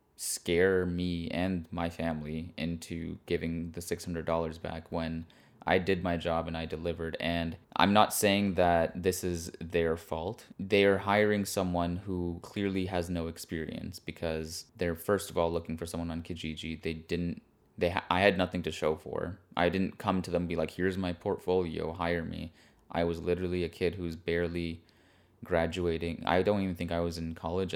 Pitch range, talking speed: 80-90 Hz, 180 wpm